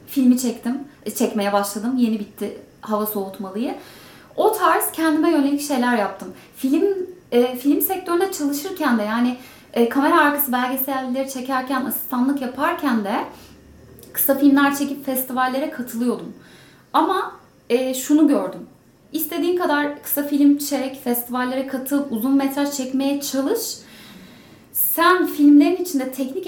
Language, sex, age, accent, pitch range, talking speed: Turkish, female, 30-49, native, 250-320 Hz, 115 wpm